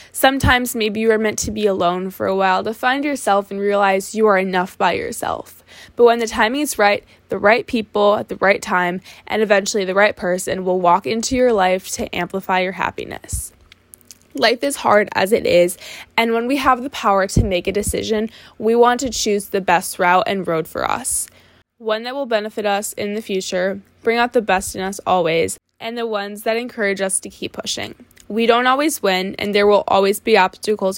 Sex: female